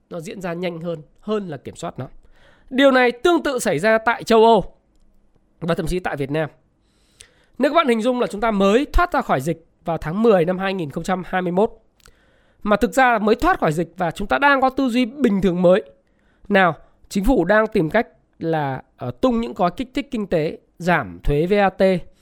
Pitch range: 180-245 Hz